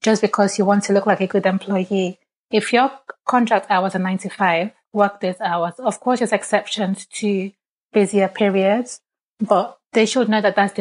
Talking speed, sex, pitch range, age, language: 185 wpm, female, 195-220 Hz, 20-39, English